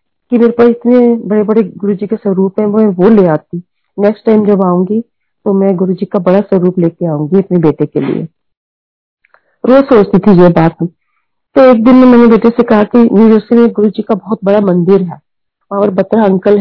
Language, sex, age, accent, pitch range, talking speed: Hindi, female, 40-59, native, 190-235 Hz, 165 wpm